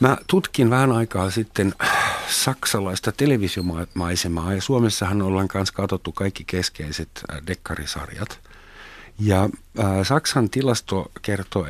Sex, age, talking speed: male, 50-69, 95 wpm